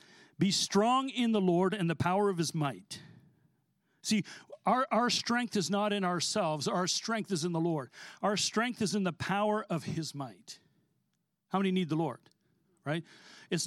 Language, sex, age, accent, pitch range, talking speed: English, male, 50-69, American, 165-205 Hz, 180 wpm